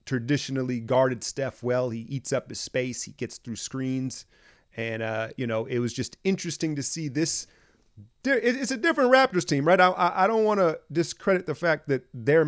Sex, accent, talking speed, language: male, American, 190 wpm, English